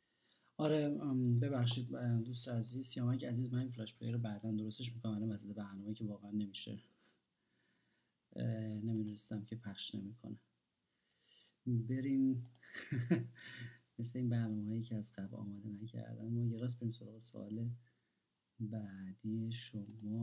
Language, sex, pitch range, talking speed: Persian, male, 115-155 Hz, 115 wpm